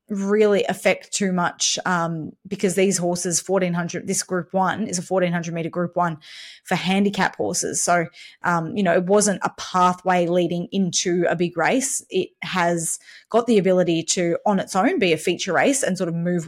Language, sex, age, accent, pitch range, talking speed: English, female, 20-39, Australian, 175-200 Hz, 185 wpm